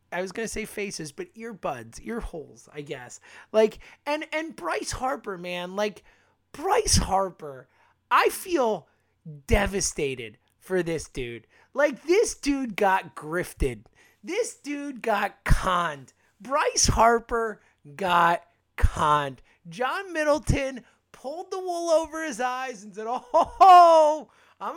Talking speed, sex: 125 wpm, male